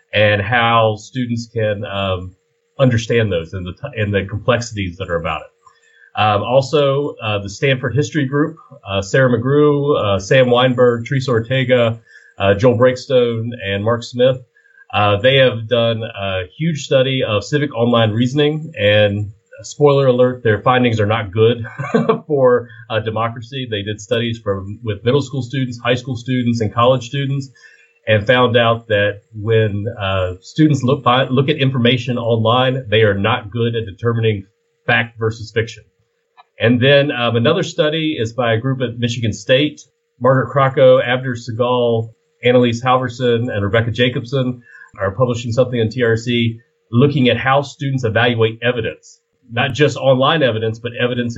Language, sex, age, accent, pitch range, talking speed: English, male, 30-49, American, 110-135 Hz, 155 wpm